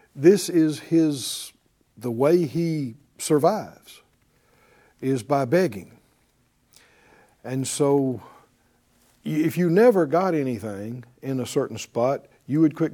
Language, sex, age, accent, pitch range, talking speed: English, male, 60-79, American, 125-165 Hz, 110 wpm